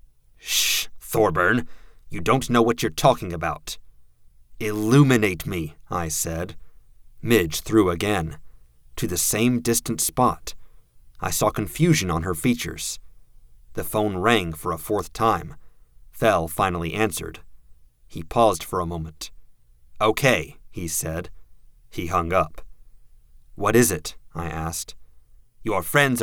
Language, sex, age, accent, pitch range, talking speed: English, male, 30-49, American, 80-120 Hz, 125 wpm